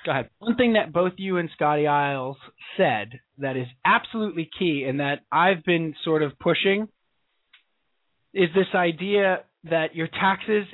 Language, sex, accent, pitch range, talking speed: English, male, American, 135-185 Hz, 155 wpm